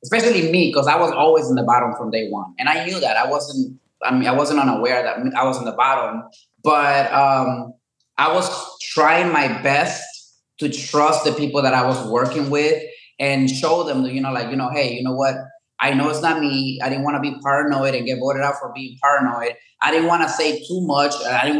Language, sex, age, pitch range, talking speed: English, male, 20-39, 125-155 Hz, 235 wpm